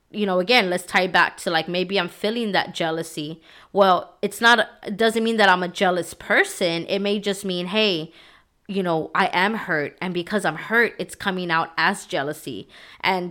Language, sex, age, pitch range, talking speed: English, female, 20-39, 180-230 Hz, 200 wpm